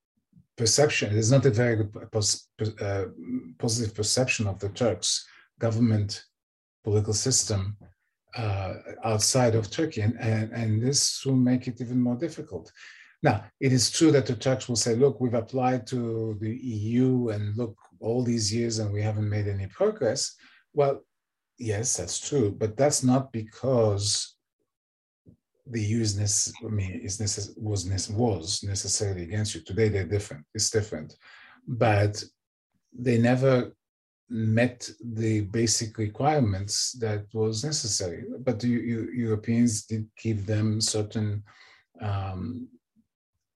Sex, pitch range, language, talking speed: male, 105-125 Hz, Turkish, 130 wpm